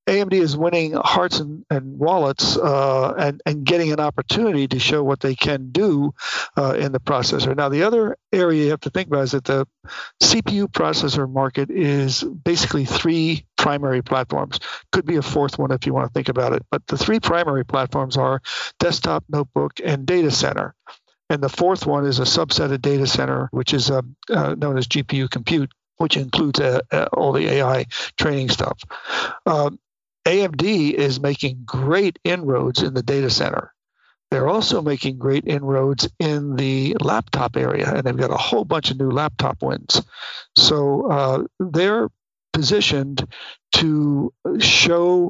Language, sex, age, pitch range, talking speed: English, male, 50-69, 135-155 Hz, 170 wpm